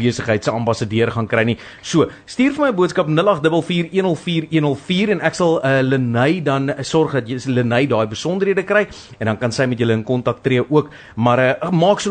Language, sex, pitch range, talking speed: English, male, 110-150 Hz, 190 wpm